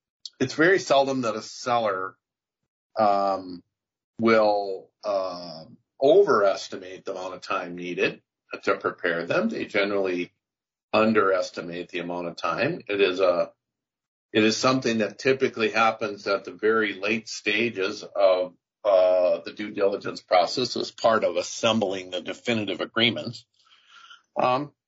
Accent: American